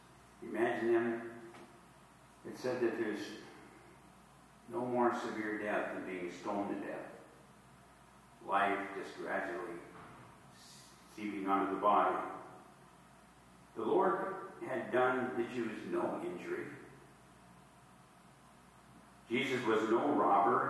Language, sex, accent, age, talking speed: English, male, American, 50-69, 100 wpm